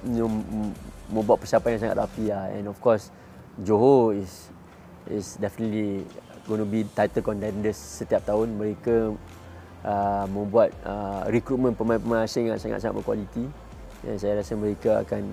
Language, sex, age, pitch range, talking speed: Malay, male, 20-39, 105-120 Hz, 145 wpm